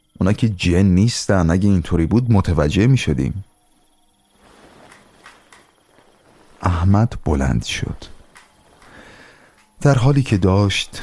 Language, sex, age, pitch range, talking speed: Persian, male, 30-49, 75-105 Hz, 85 wpm